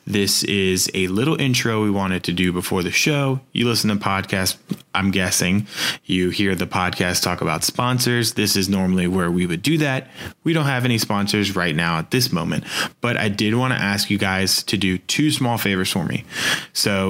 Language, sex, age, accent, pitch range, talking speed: English, male, 20-39, American, 95-110 Hz, 205 wpm